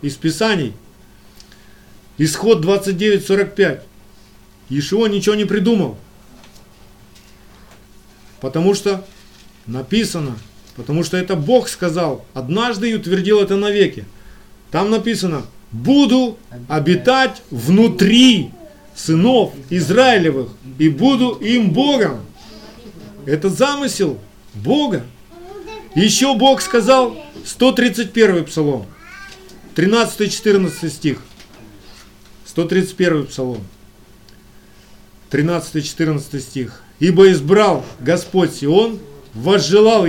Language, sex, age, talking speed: Russian, male, 50-69, 75 wpm